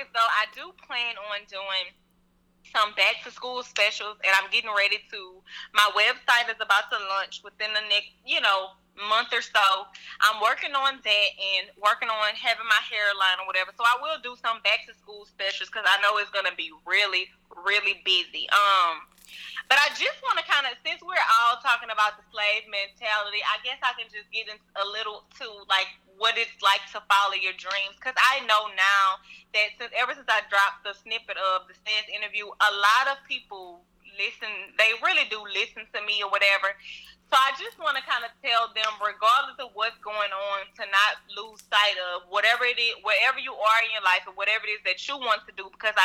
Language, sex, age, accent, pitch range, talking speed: English, female, 20-39, American, 200-240 Hz, 210 wpm